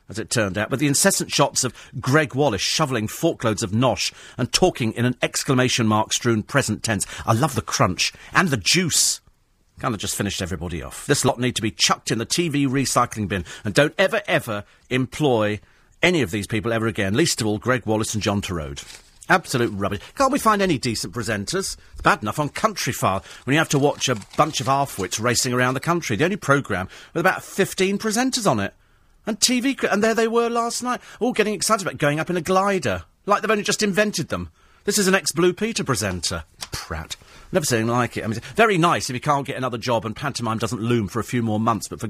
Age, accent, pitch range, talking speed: 40-59, British, 110-165 Hz, 225 wpm